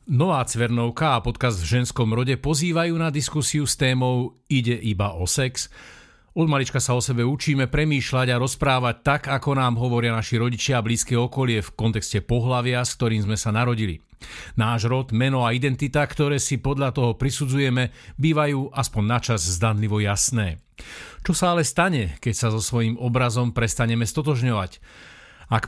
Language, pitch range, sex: Slovak, 110-135 Hz, male